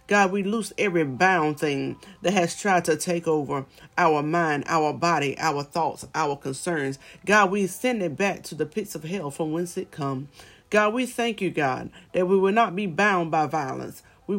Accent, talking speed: American, 200 wpm